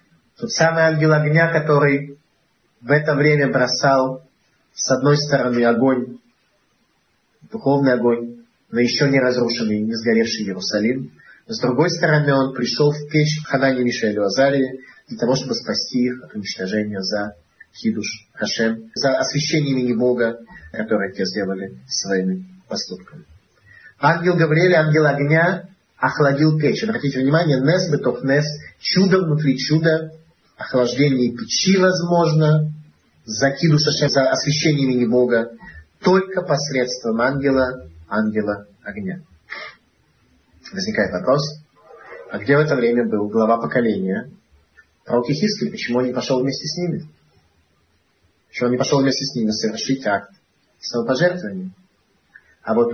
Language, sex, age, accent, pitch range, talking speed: Russian, male, 30-49, native, 115-155 Hz, 125 wpm